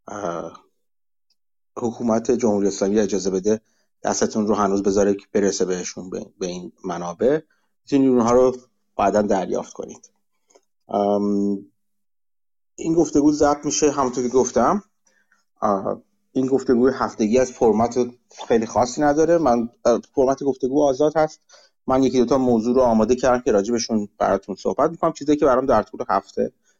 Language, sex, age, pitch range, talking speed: Persian, male, 30-49, 100-135 Hz, 145 wpm